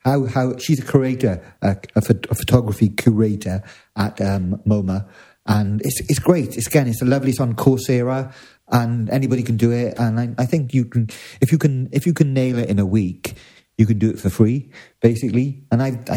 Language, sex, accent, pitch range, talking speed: English, male, British, 110-135 Hz, 210 wpm